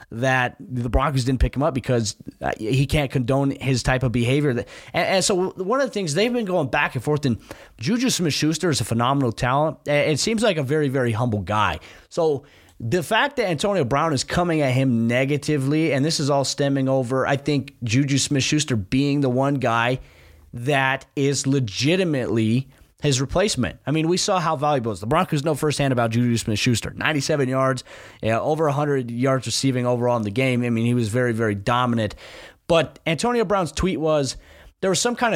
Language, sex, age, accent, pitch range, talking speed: English, male, 20-39, American, 125-155 Hz, 195 wpm